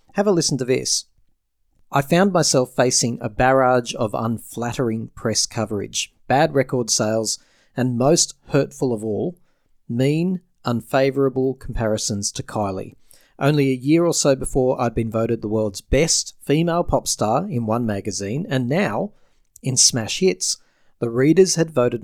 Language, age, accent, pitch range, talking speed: English, 40-59, Australian, 115-140 Hz, 150 wpm